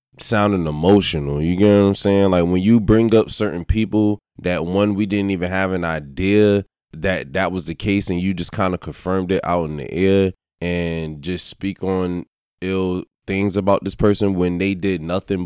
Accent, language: American, English